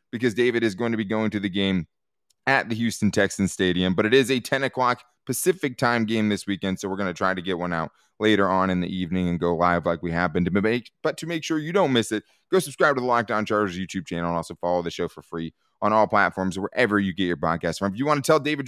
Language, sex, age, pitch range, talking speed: English, male, 20-39, 90-130 Hz, 275 wpm